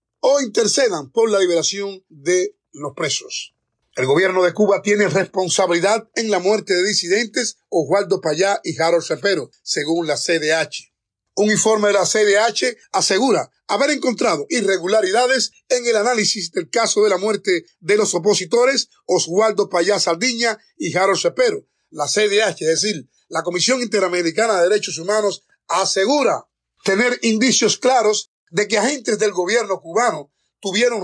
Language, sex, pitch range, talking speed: English, male, 185-240 Hz, 145 wpm